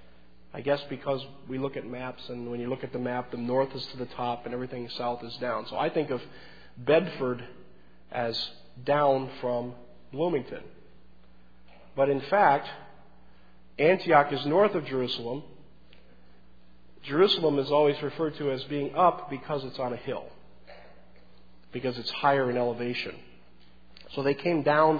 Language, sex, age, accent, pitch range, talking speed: English, male, 40-59, American, 115-145 Hz, 155 wpm